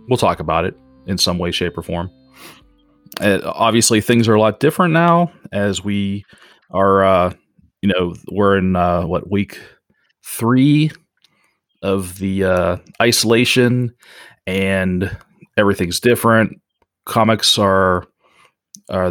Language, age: English, 30-49